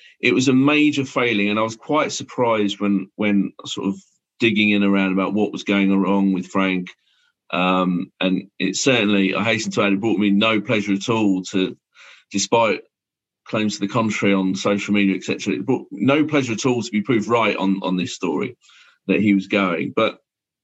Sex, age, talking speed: male, 40-59, 200 wpm